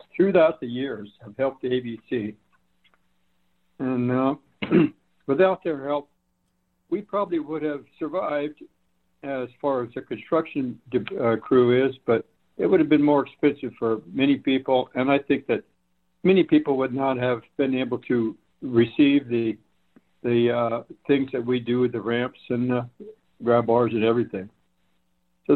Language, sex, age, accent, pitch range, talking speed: English, male, 60-79, American, 110-140 Hz, 150 wpm